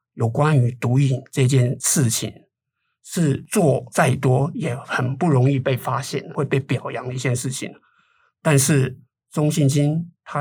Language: Chinese